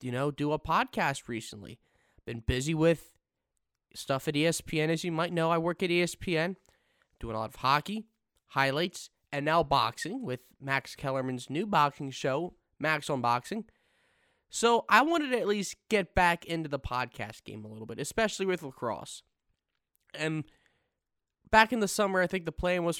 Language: English